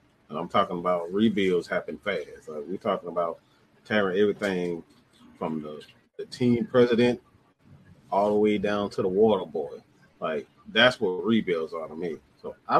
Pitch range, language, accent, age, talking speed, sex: 90-120 Hz, English, American, 30-49, 165 wpm, male